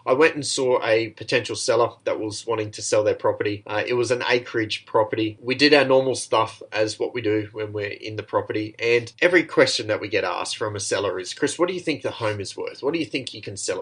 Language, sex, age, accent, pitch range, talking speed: English, male, 20-39, Australian, 110-170 Hz, 265 wpm